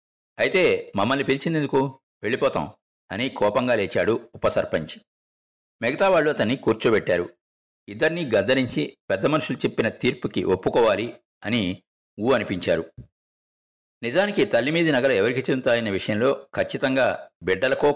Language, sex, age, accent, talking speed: Telugu, male, 50-69, native, 105 wpm